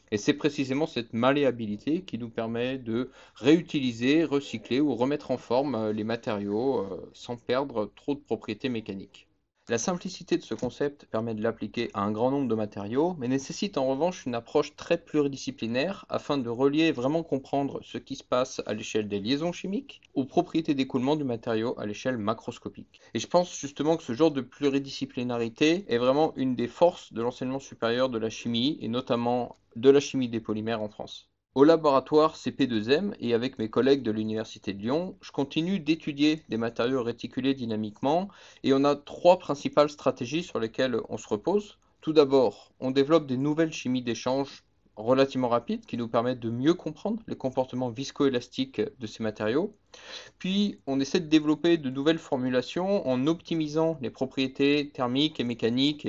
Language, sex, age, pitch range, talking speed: French, male, 40-59, 115-155 Hz, 175 wpm